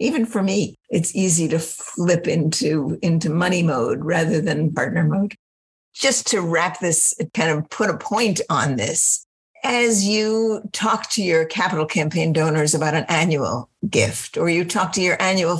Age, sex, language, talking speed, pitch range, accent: 50-69, female, English, 170 wpm, 175-220 Hz, American